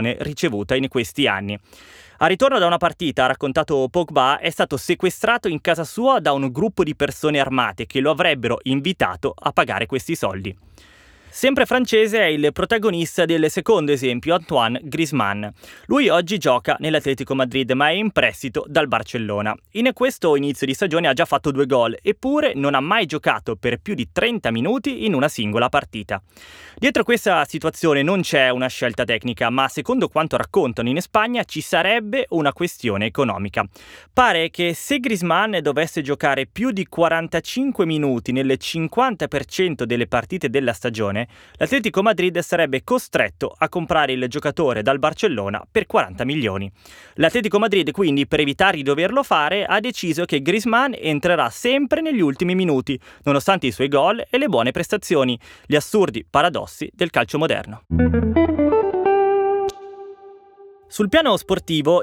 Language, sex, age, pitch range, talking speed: Italian, male, 20-39, 130-215 Hz, 155 wpm